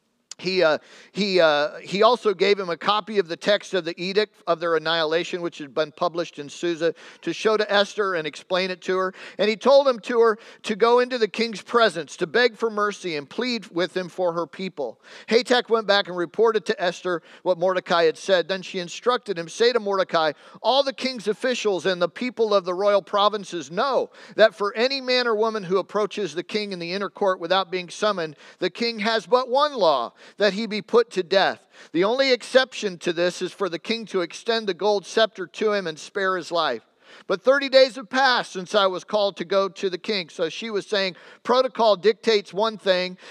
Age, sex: 50-69, male